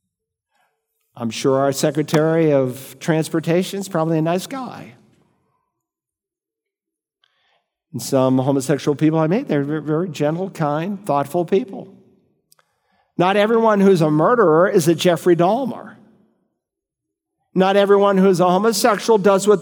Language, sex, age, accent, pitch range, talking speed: English, male, 50-69, American, 155-240 Hz, 120 wpm